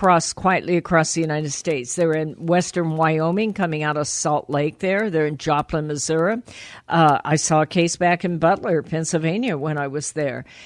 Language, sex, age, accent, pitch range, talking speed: English, female, 50-69, American, 160-195 Hz, 180 wpm